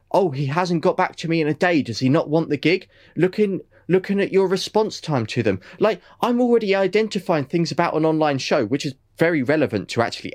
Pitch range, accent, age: 115-155 Hz, British, 20-39